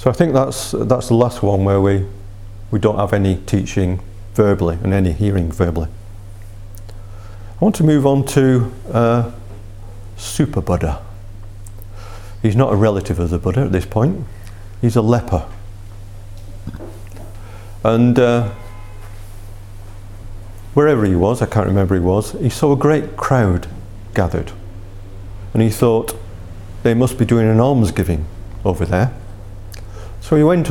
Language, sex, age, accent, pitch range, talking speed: English, male, 40-59, British, 100-115 Hz, 140 wpm